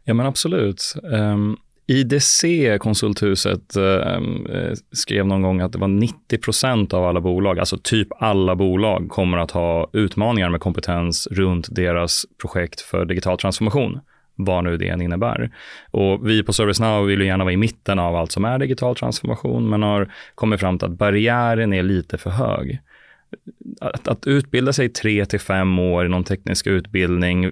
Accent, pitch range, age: native, 95-110 Hz, 30-49